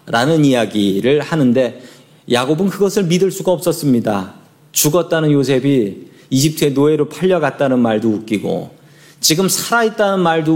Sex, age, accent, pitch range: male, 40-59, native, 125-170 Hz